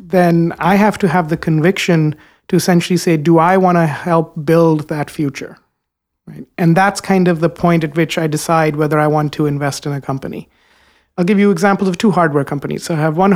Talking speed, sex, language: 220 wpm, male, English